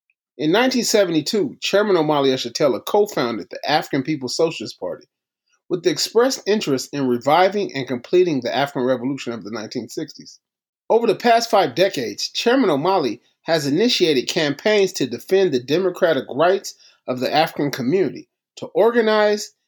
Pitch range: 130-200 Hz